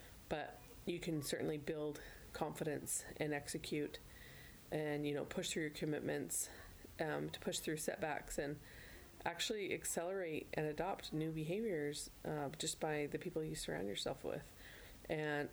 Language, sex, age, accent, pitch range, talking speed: English, female, 20-39, American, 145-165 Hz, 145 wpm